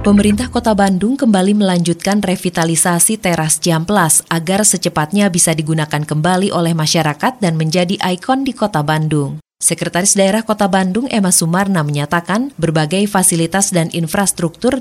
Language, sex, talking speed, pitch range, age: Indonesian, female, 130 wpm, 160-205 Hz, 20-39